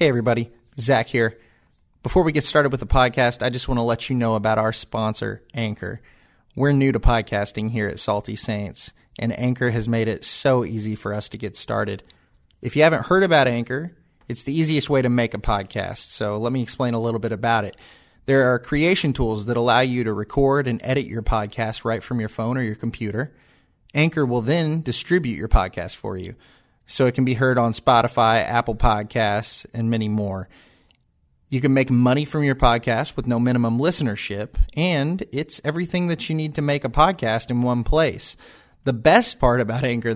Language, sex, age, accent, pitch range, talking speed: English, male, 30-49, American, 110-135 Hz, 200 wpm